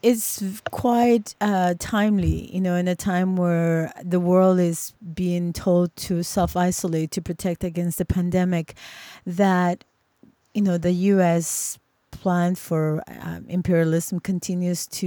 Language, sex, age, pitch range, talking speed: English, female, 30-49, 170-205 Hz, 130 wpm